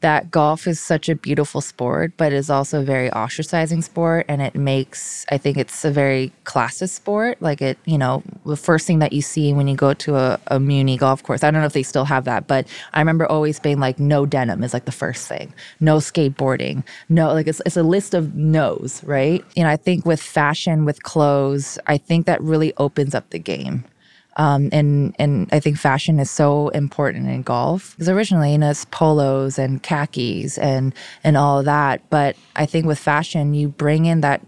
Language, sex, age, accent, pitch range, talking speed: English, female, 20-39, American, 140-160 Hz, 215 wpm